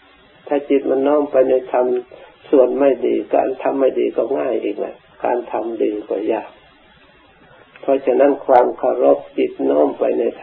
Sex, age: male, 60-79